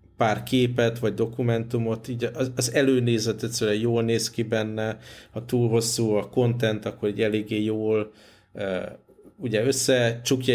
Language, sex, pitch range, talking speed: Hungarian, male, 110-125 Hz, 140 wpm